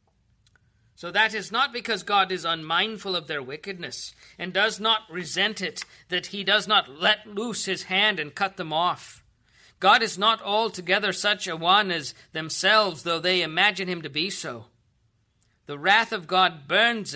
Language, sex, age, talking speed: English, male, 50-69, 170 wpm